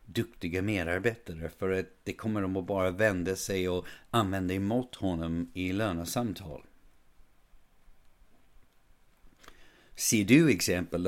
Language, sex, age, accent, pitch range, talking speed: Swedish, male, 60-79, native, 90-110 Hz, 110 wpm